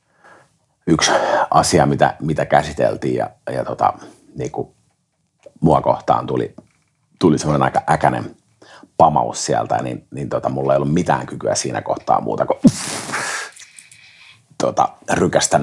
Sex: male